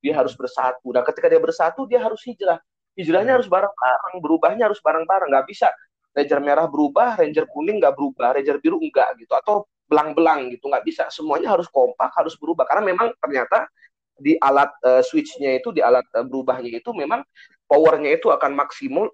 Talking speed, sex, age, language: 180 wpm, male, 30-49, Indonesian